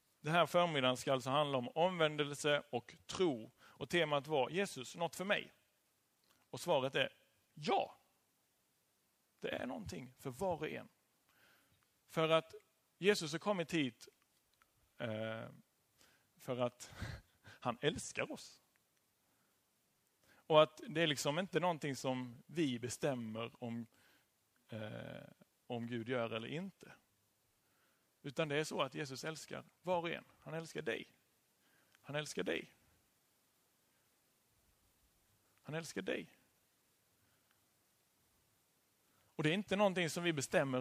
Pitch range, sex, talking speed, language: 125-170 Hz, male, 120 wpm, Swedish